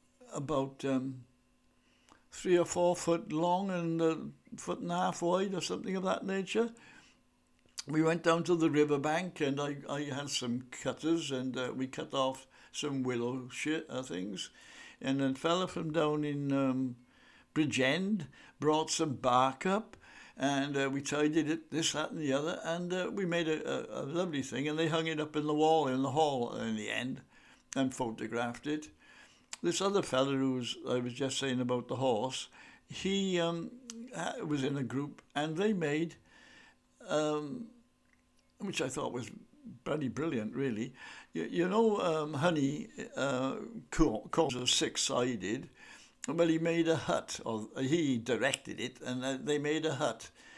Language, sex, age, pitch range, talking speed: English, male, 60-79, 135-170 Hz, 170 wpm